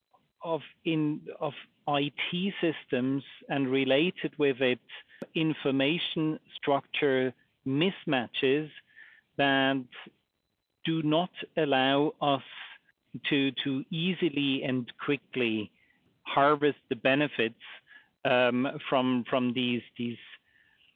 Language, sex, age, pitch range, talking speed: English, male, 50-69, 130-155 Hz, 85 wpm